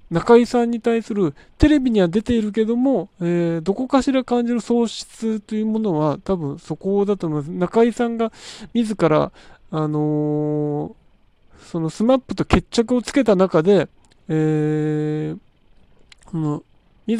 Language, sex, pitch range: Japanese, male, 160-230 Hz